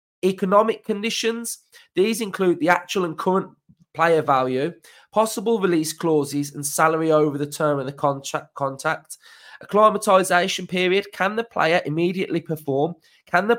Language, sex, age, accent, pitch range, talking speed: English, male, 20-39, British, 150-195 Hz, 135 wpm